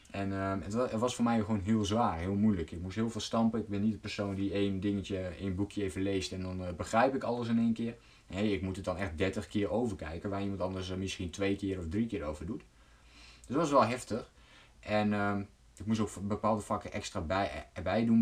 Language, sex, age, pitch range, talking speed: Dutch, male, 20-39, 95-115 Hz, 245 wpm